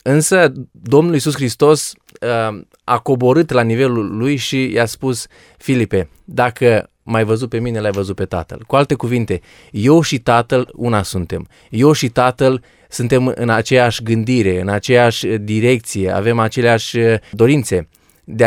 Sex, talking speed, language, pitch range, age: male, 145 wpm, Romanian, 110-130 Hz, 20-39